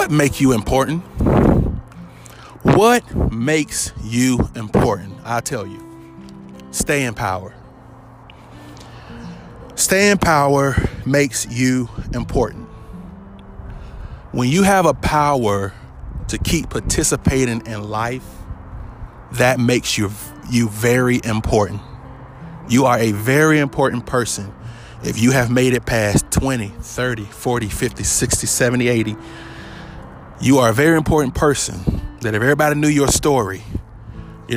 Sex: male